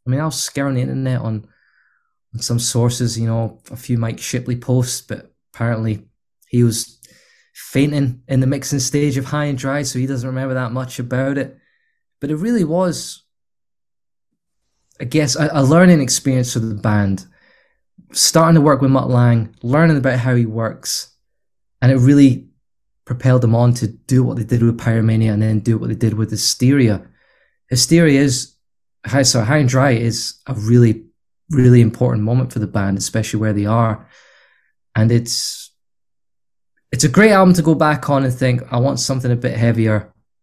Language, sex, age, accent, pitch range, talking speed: English, male, 20-39, British, 115-140 Hz, 180 wpm